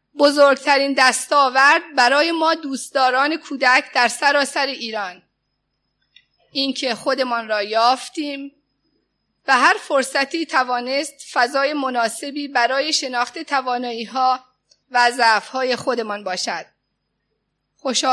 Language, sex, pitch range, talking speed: Persian, female, 240-285 Hz, 95 wpm